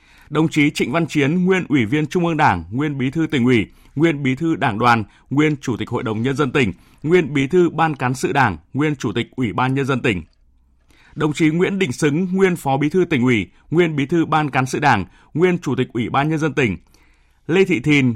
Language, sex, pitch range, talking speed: Vietnamese, male, 120-160 Hz, 240 wpm